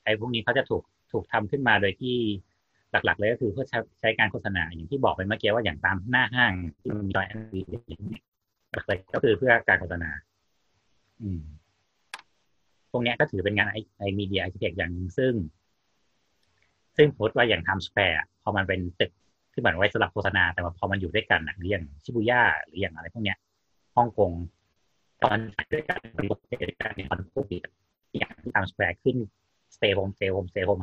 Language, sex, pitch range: Thai, male, 90-105 Hz